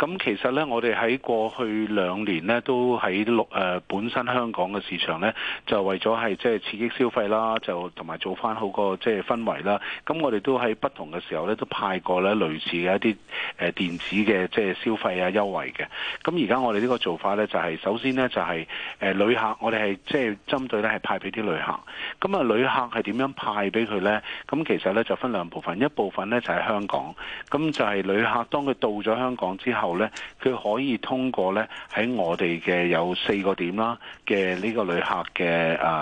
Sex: male